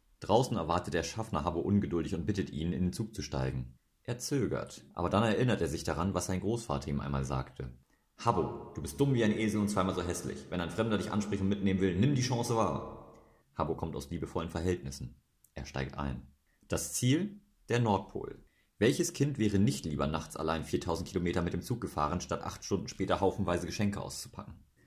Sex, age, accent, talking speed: male, 30-49, German, 200 wpm